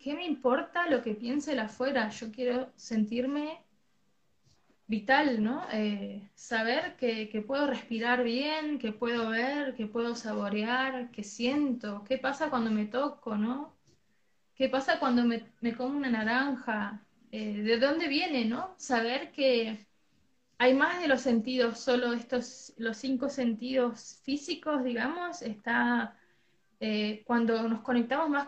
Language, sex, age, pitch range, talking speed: Spanish, female, 20-39, 230-275 Hz, 140 wpm